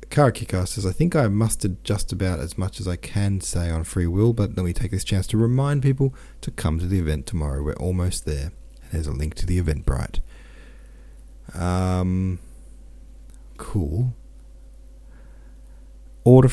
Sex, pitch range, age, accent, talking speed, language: male, 75-110 Hz, 40-59, Australian, 155 wpm, English